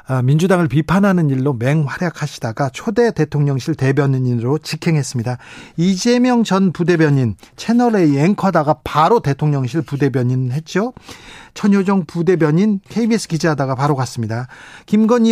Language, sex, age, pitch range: Korean, male, 40-59, 140-200 Hz